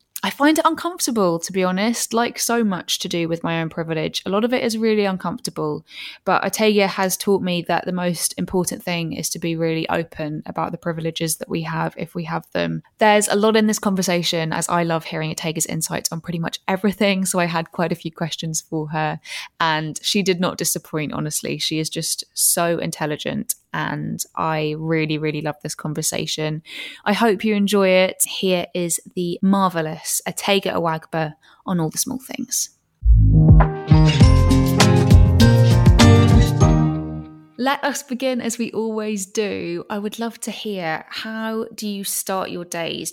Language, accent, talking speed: English, British, 175 wpm